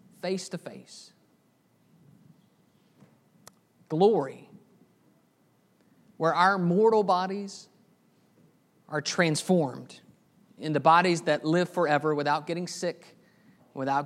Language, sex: English, male